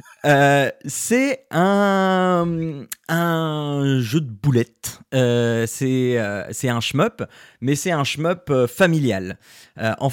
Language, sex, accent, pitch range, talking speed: French, male, French, 115-155 Hz, 125 wpm